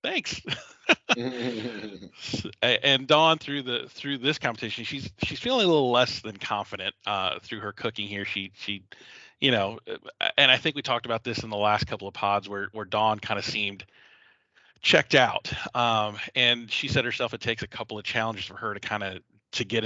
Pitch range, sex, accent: 100-125 Hz, male, American